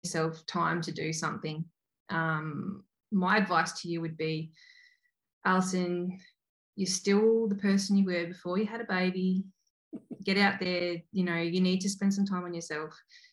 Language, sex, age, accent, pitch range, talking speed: English, female, 20-39, Australian, 160-195 Hz, 165 wpm